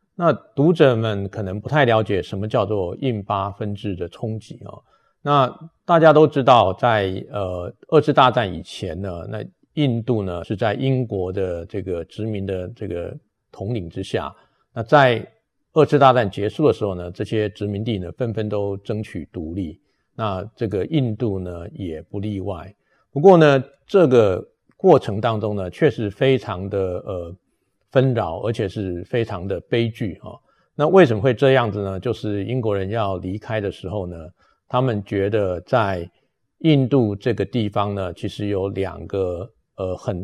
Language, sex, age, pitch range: Chinese, male, 50-69, 95-120 Hz